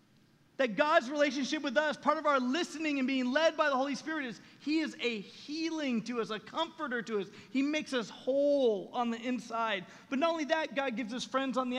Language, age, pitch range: English, 30-49, 240-295 Hz